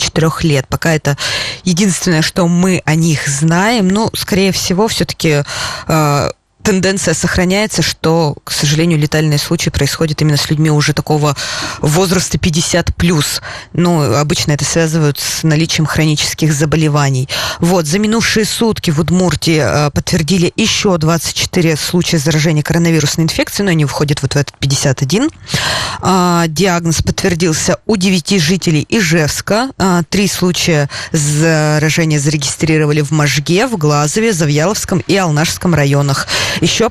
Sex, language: female, Russian